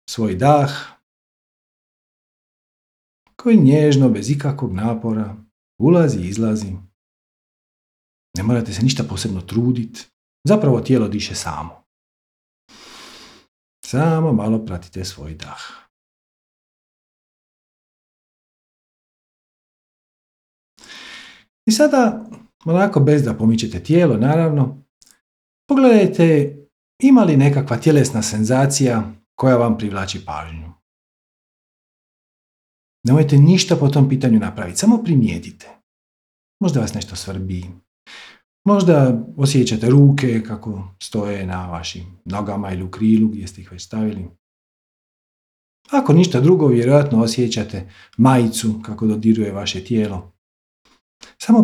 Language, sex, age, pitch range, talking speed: Croatian, male, 50-69, 100-145 Hz, 95 wpm